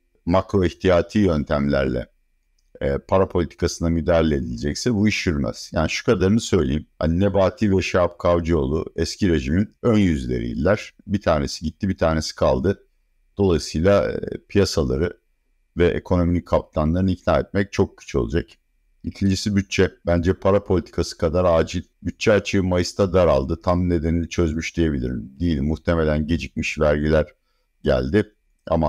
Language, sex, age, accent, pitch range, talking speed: Turkish, male, 60-79, native, 75-95 Hz, 130 wpm